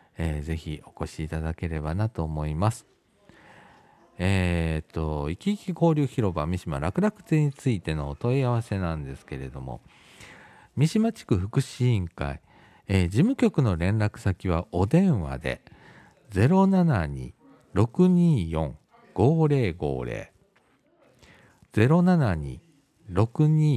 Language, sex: Japanese, male